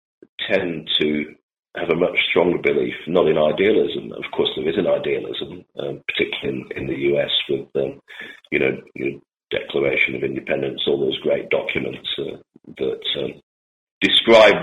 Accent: British